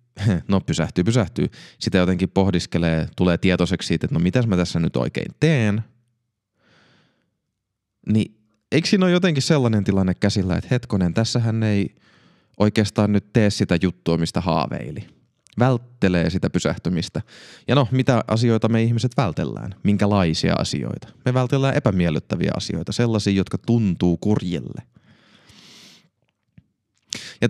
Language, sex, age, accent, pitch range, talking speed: Finnish, male, 30-49, native, 90-115 Hz, 125 wpm